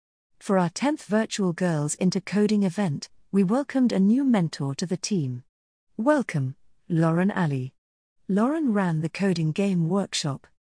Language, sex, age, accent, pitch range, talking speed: English, female, 40-59, British, 160-205 Hz, 140 wpm